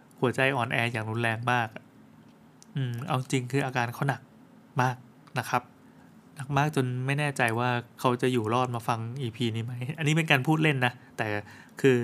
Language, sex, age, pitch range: Thai, male, 20-39, 125-145 Hz